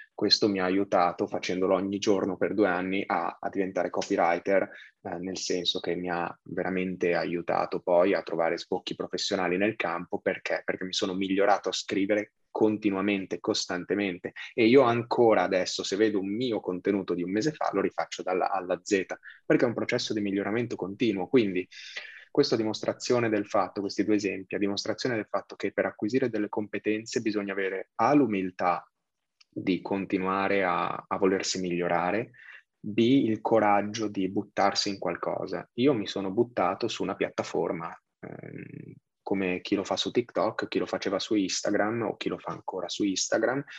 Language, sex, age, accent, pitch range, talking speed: Italian, male, 20-39, native, 95-110 Hz, 165 wpm